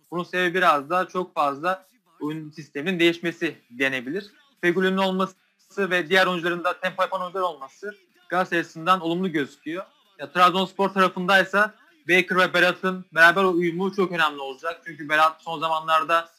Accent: native